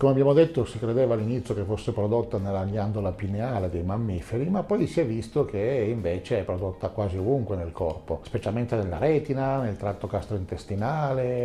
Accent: native